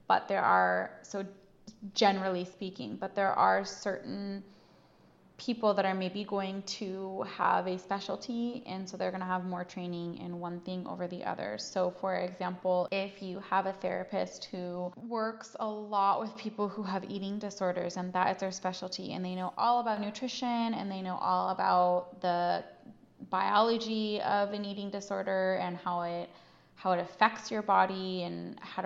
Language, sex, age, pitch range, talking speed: English, female, 20-39, 180-210 Hz, 175 wpm